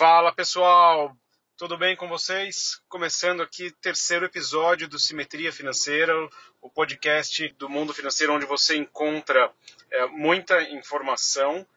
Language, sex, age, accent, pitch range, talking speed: Portuguese, male, 30-49, Brazilian, 135-165 Hz, 125 wpm